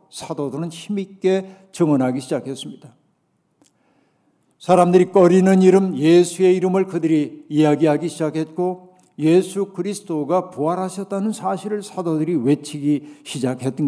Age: 50-69